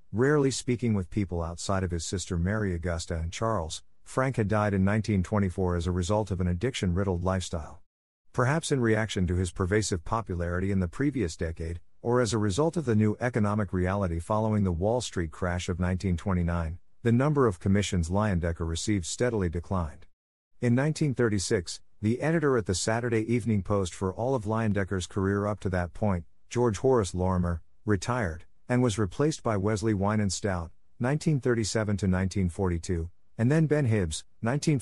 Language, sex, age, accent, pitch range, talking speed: English, male, 50-69, American, 90-115 Hz, 160 wpm